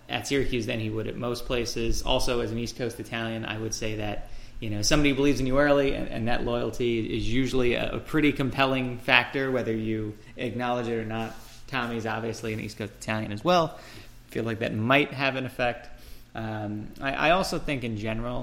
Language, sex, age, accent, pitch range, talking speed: English, male, 20-39, American, 110-130 Hz, 210 wpm